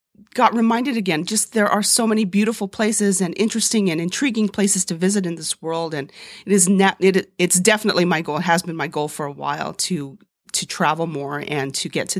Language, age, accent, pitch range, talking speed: English, 40-59, American, 165-220 Hz, 220 wpm